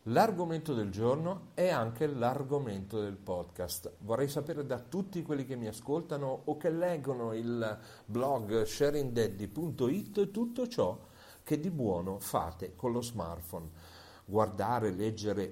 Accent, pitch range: native, 100-140 Hz